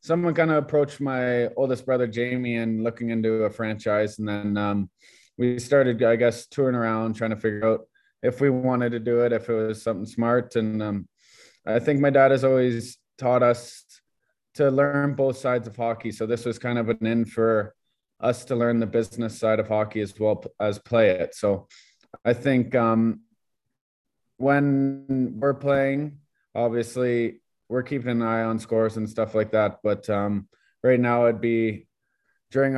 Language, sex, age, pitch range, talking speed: English, male, 20-39, 110-125 Hz, 180 wpm